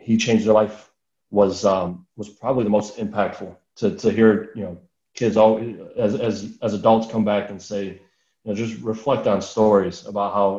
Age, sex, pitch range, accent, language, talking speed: 20-39, male, 100-110 Hz, American, English, 195 wpm